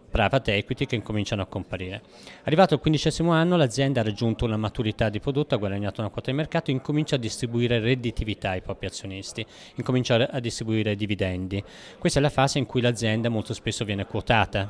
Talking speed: 190 wpm